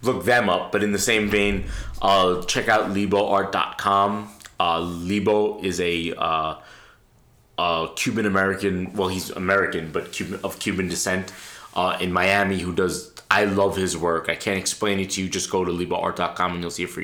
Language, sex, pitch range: English, male, 90-100 Hz